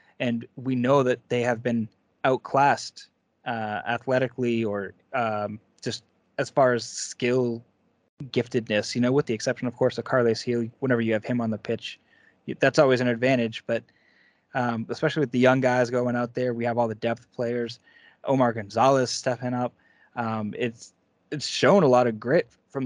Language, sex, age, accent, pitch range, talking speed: English, male, 20-39, American, 115-130 Hz, 180 wpm